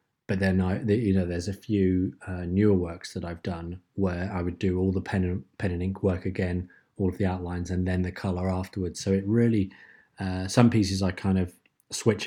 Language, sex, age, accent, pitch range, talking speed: English, male, 20-39, British, 90-100 Hz, 225 wpm